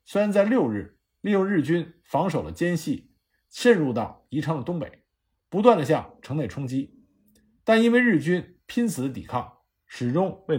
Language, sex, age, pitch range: Chinese, male, 50-69, 130-205 Hz